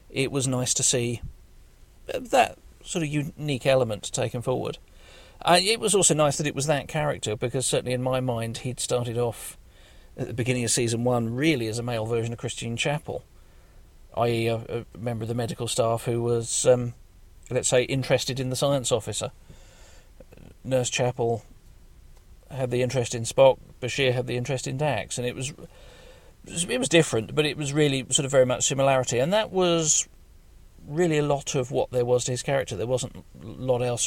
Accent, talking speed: British, 190 wpm